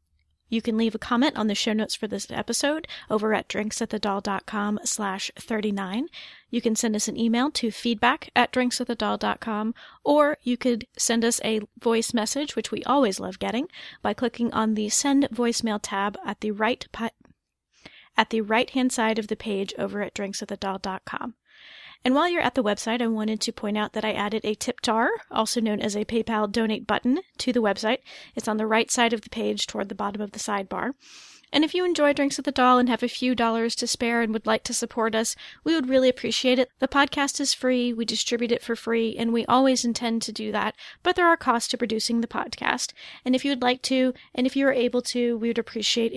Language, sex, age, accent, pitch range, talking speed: English, female, 30-49, American, 215-250 Hz, 215 wpm